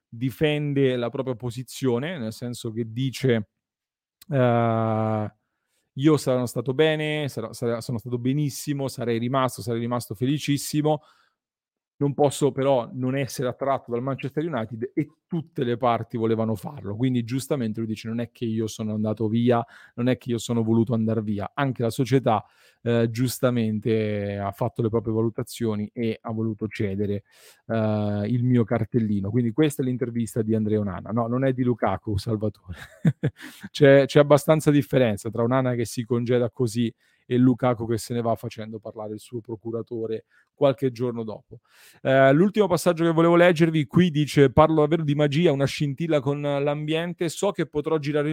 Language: Italian